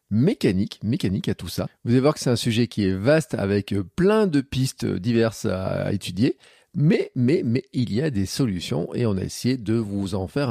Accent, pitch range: French, 95-125 Hz